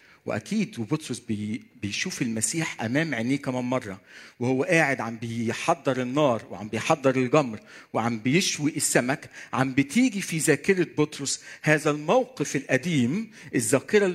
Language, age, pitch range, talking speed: Arabic, 50-69, 125-160 Hz, 120 wpm